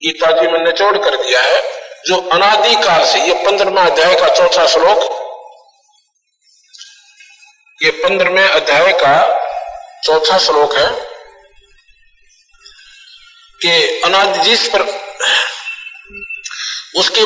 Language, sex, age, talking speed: Hindi, male, 50-69, 95 wpm